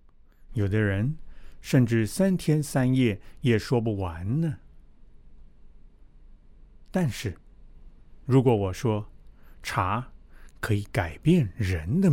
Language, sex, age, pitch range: Chinese, male, 60-79, 95-140 Hz